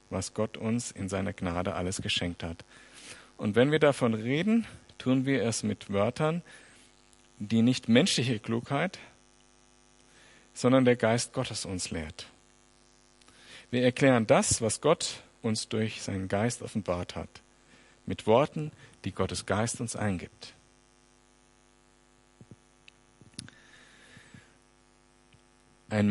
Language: German